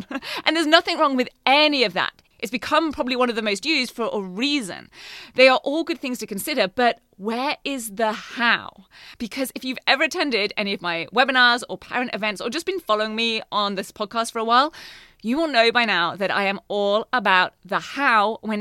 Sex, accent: female, British